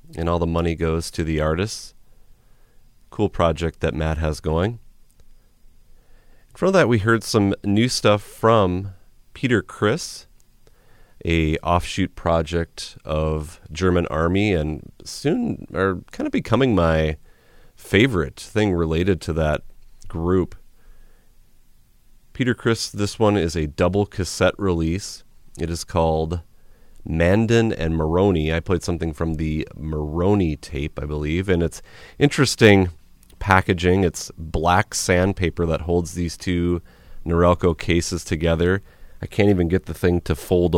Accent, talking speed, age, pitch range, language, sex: American, 130 wpm, 30-49, 80-95 Hz, English, male